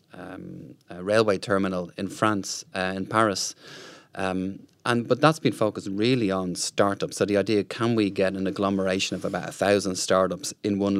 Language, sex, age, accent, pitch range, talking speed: English, male, 30-49, Irish, 95-105 Hz, 180 wpm